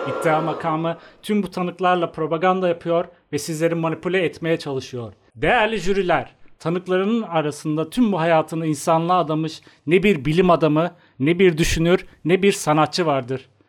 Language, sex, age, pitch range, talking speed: Turkish, male, 40-59, 135-170 Hz, 140 wpm